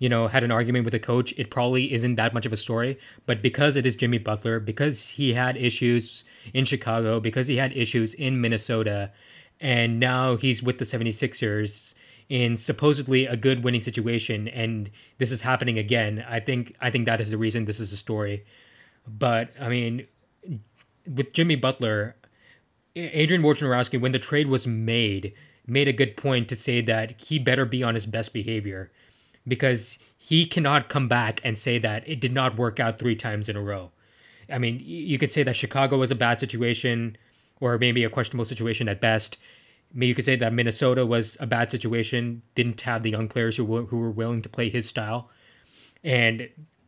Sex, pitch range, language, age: male, 115-130 Hz, English, 20-39